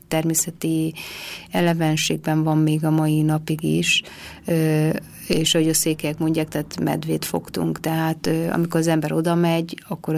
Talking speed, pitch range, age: 135 wpm, 155-165 Hz, 30-49